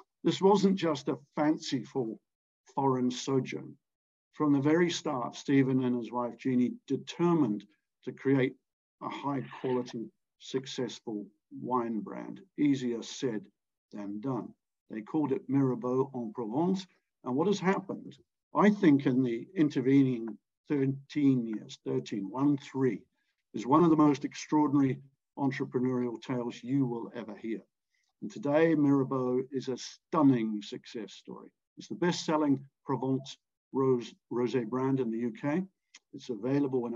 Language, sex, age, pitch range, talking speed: English, male, 60-79, 120-150 Hz, 130 wpm